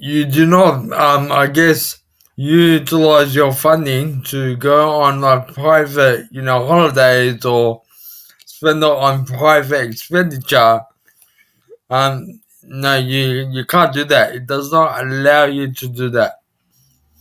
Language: English